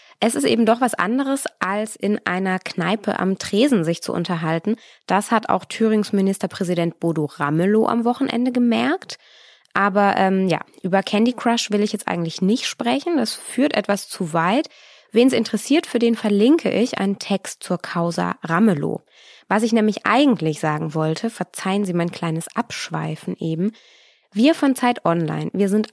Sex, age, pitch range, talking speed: female, 20-39, 180-235 Hz, 165 wpm